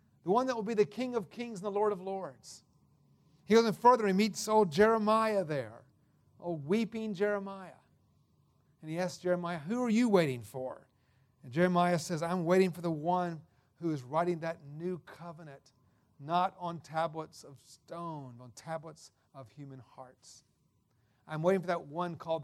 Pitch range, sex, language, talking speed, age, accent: 140-200 Hz, male, English, 175 wpm, 40-59, American